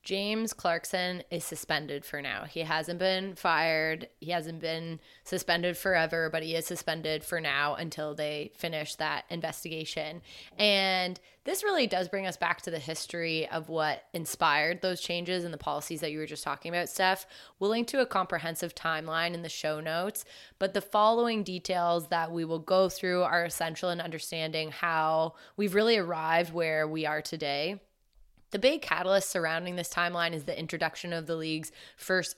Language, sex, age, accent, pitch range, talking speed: English, female, 20-39, American, 160-190 Hz, 180 wpm